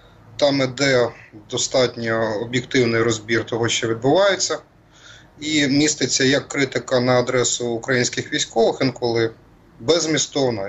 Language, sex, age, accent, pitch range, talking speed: Ukrainian, male, 30-49, native, 115-140 Hz, 100 wpm